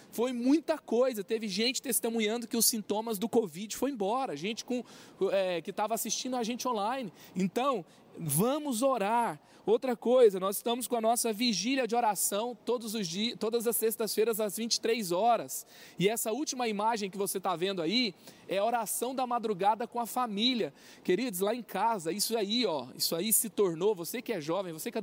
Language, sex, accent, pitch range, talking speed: Portuguese, male, Brazilian, 205-240 Hz, 185 wpm